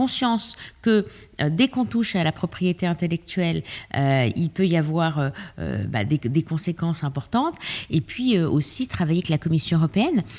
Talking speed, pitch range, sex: 175 wpm, 160-210 Hz, female